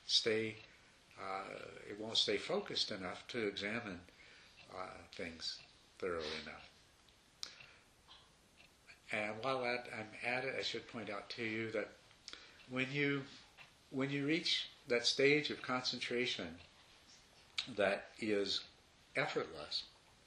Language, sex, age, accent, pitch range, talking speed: English, male, 60-79, American, 105-140 Hz, 110 wpm